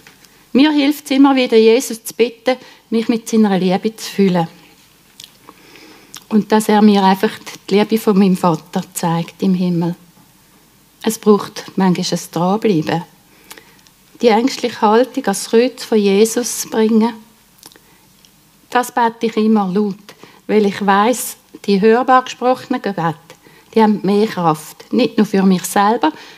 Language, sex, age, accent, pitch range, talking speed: German, female, 60-79, Swiss, 190-235 Hz, 140 wpm